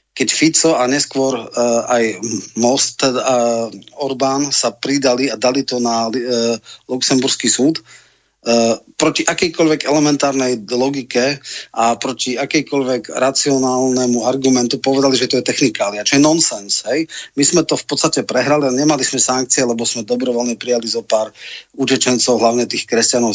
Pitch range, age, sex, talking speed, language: 120-140 Hz, 40-59, male, 145 wpm, Slovak